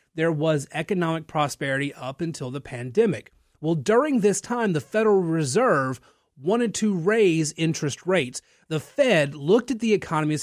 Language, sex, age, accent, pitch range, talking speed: English, male, 30-49, American, 140-190 Hz, 155 wpm